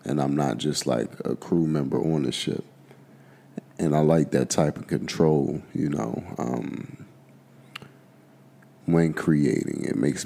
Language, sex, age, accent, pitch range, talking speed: English, male, 30-49, American, 75-85 Hz, 145 wpm